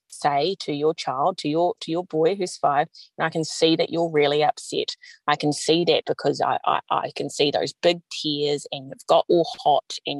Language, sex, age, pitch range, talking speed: English, female, 20-39, 145-175 Hz, 225 wpm